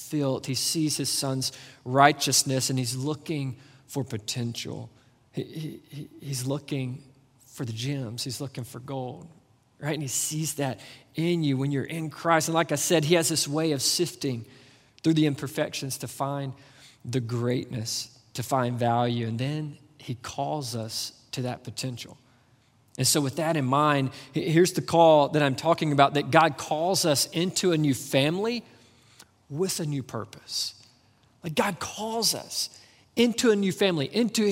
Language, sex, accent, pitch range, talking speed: English, male, American, 130-170 Hz, 165 wpm